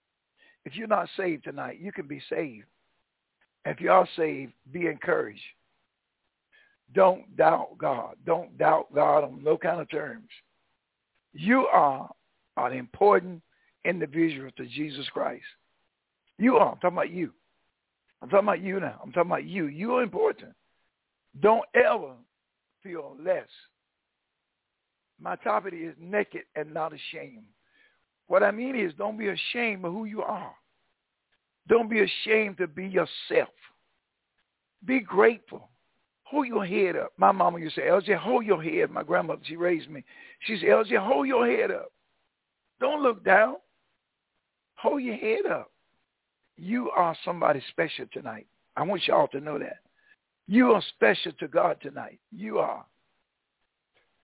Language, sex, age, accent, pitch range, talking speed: English, male, 60-79, American, 170-260 Hz, 150 wpm